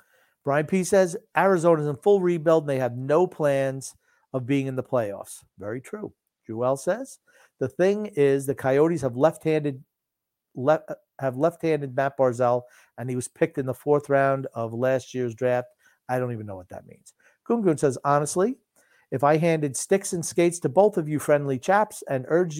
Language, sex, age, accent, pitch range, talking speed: English, male, 50-69, American, 130-170 Hz, 190 wpm